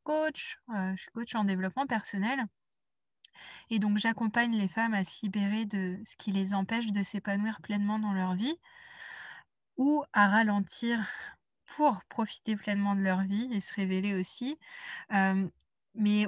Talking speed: 150 wpm